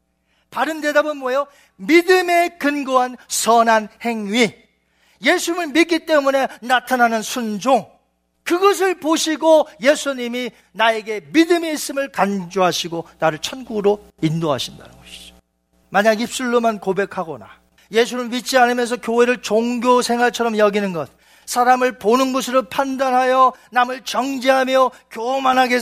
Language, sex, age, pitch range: Korean, male, 40-59, 200-265 Hz